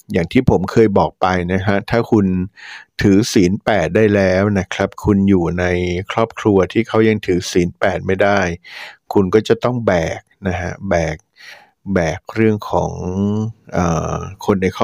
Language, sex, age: Thai, male, 60-79